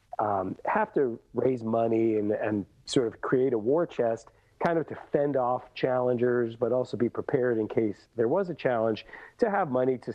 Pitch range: 115-135 Hz